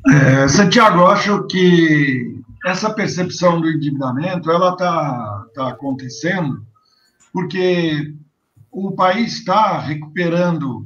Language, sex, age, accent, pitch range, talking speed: Portuguese, male, 60-79, Brazilian, 150-215 Hz, 75 wpm